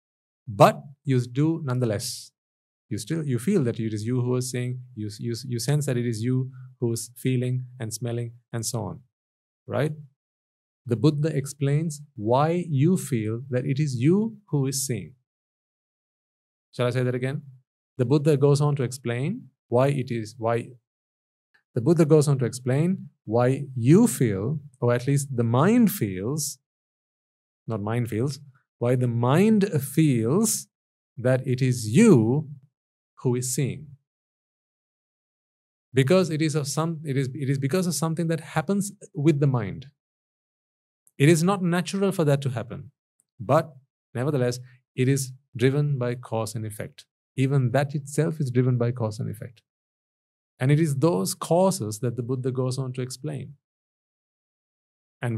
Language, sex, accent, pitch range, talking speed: English, male, Indian, 120-150 Hz, 155 wpm